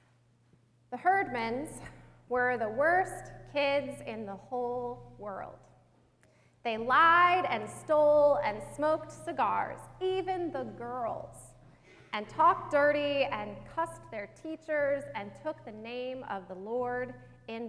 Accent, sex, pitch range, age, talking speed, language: American, female, 220-300 Hz, 30-49, 120 wpm, English